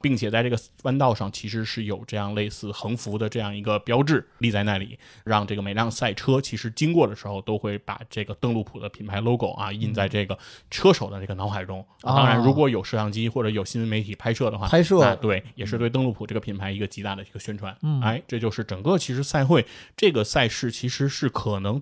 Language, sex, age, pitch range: Chinese, male, 20-39, 105-130 Hz